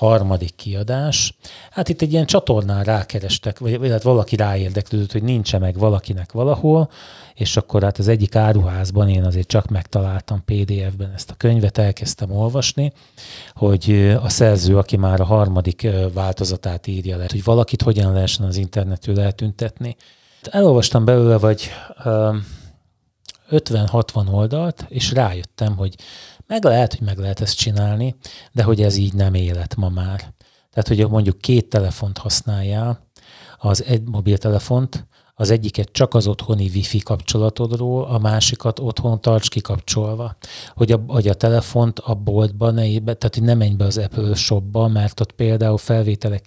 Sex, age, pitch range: male, 30-49, 100-115 Hz